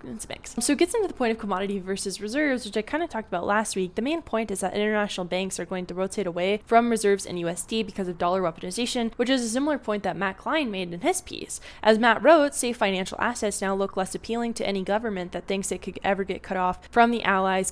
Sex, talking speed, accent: female, 255 wpm, American